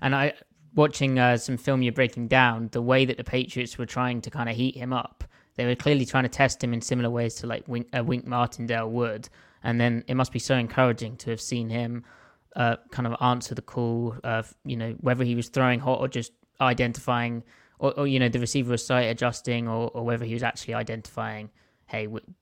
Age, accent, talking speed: 20-39, British, 230 wpm